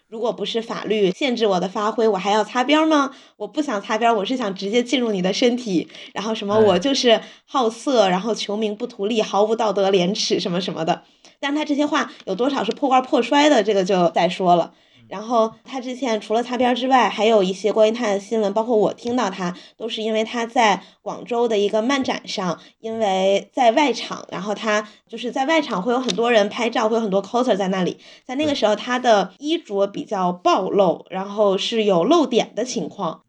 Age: 20-39